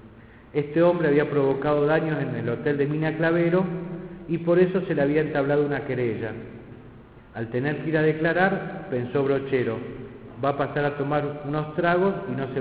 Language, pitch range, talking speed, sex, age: Spanish, 135-185 Hz, 180 wpm, male, 50-69